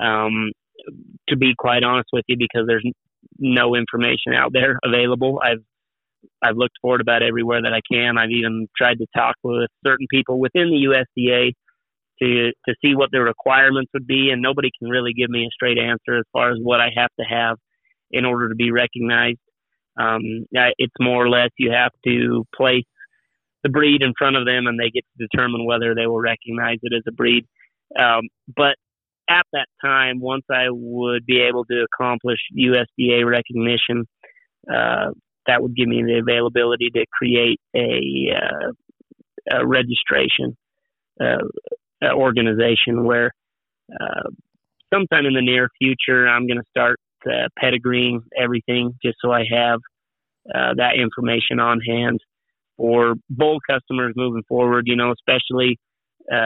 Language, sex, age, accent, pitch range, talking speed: English, male, 30-49, American, 115-125 Hz, 165 wpm